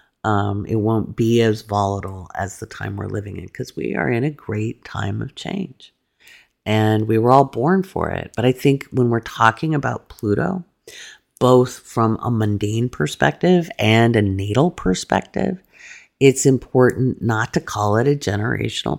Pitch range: 105-130 Hz